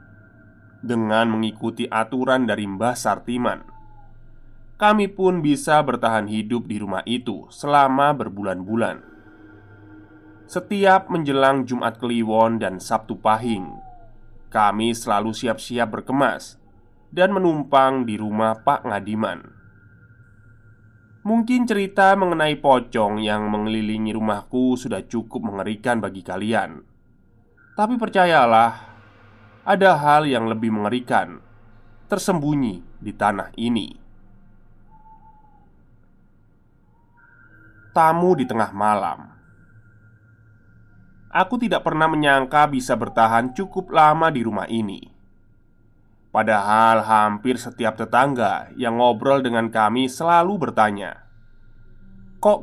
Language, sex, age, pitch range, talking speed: Indonesian, male, 20-39, 110-135 Hz, 95 wpm